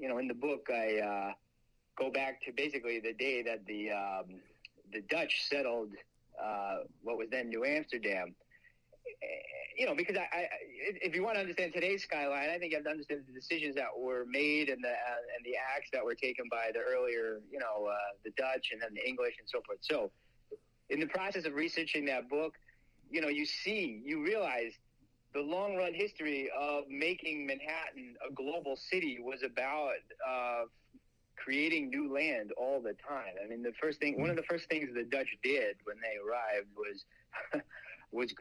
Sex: male